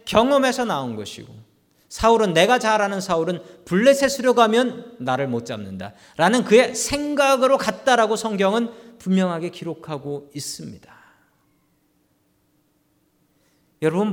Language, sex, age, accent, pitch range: Korean, male, 40-59, native, 170-245 Hz